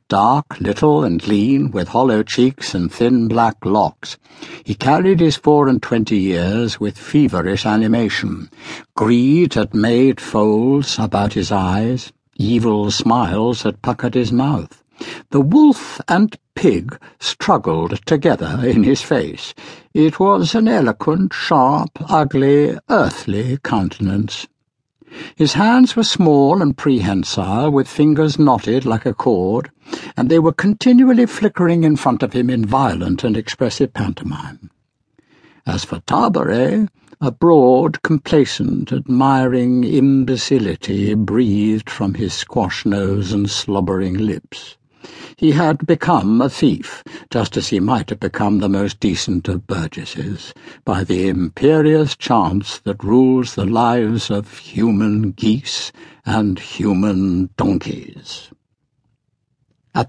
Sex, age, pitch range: male, 60-79, 105-155 Hz